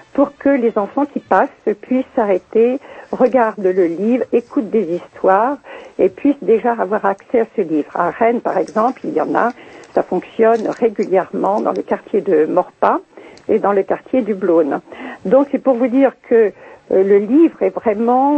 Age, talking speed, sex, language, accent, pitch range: 60-79, 180 wpm, female, French, French, 205-280 Hz